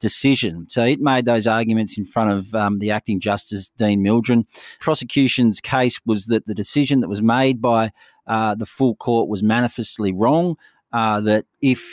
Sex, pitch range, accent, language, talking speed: male, 105-125 Hz, Australian, English, 175 wpm